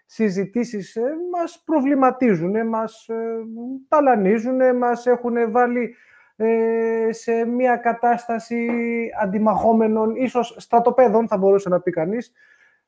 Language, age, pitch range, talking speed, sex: Greek, 30-49, 190-240 Hz, 90 wpm, male